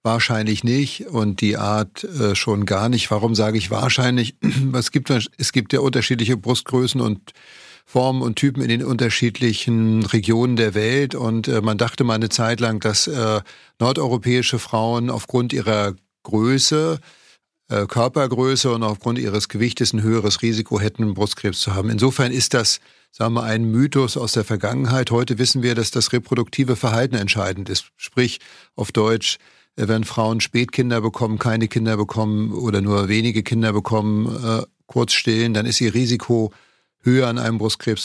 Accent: German